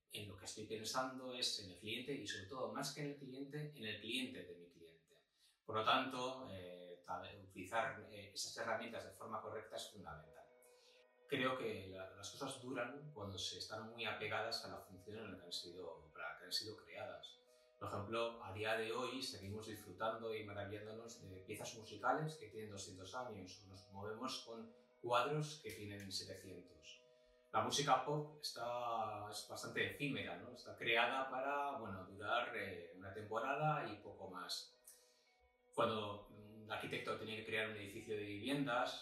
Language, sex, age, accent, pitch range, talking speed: Spanish, male, 30-49, Spanish, 100-125 Hz, 175 wpm